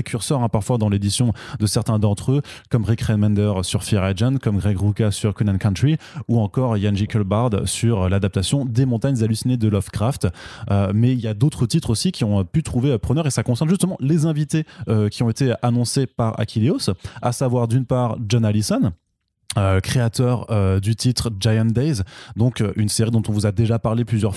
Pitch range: 100-120 Hz